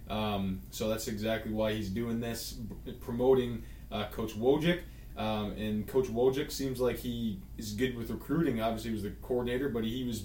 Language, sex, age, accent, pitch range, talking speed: English, male, 20-39, American, 110-125 Hz, 175 wpm